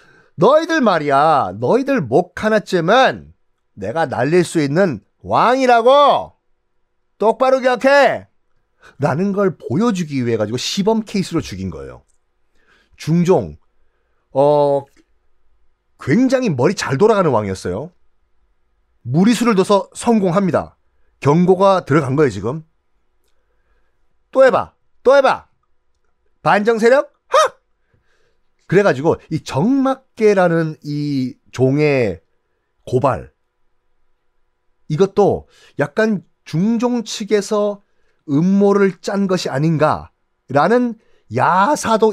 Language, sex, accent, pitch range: Korean, male, native, 145-235 Hz